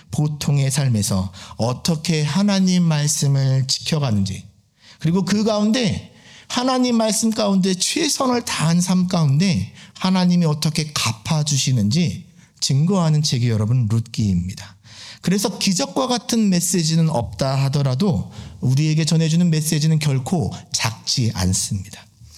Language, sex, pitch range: Korean, male, 120-180 Hz